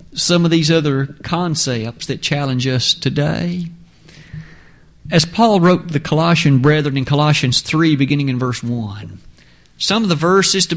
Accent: American